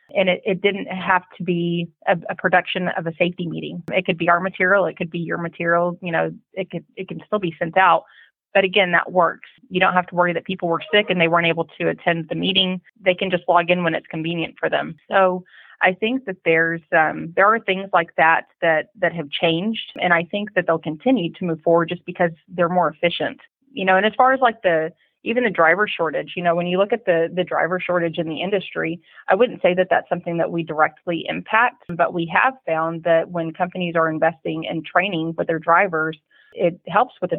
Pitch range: 165-185 Hz